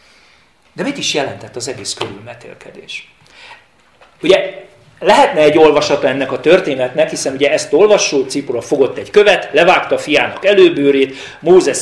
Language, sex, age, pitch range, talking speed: Hungarian, male, 40-59, 130-225 Hz, 135 wpm